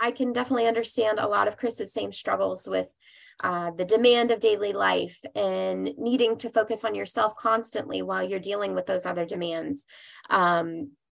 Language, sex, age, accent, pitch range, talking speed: English, female, 20-39, American, 180-230 Hz, 170 wpm